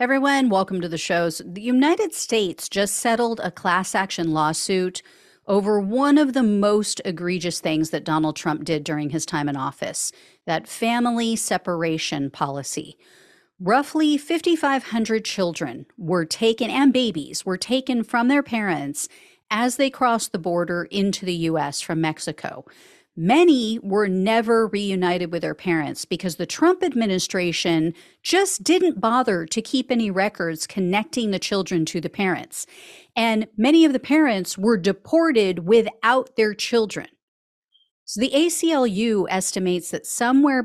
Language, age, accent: English, 40-59, American